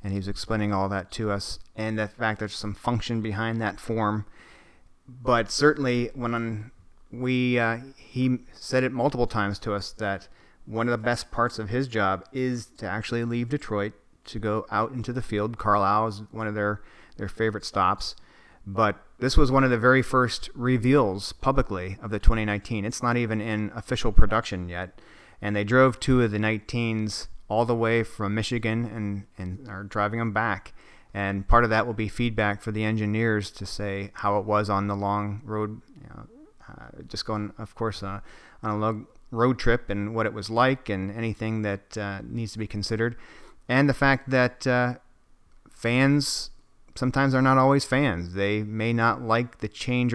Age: 30-49